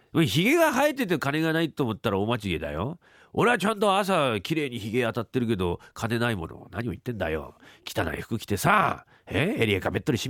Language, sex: Japanese, male